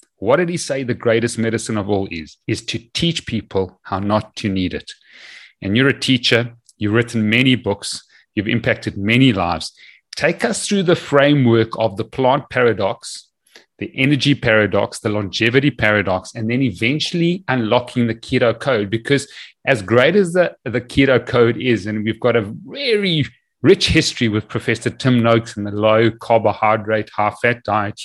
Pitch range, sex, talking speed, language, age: 115-165 Hz, male, 165 wpm, English, 30-49